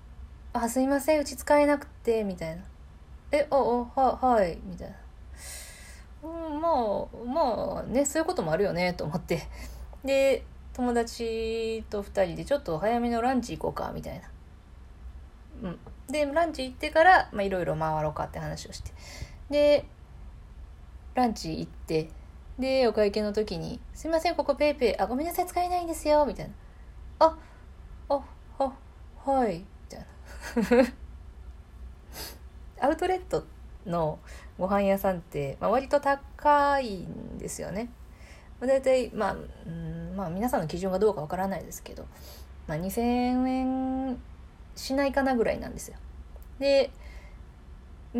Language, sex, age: Japanese, female, 20-39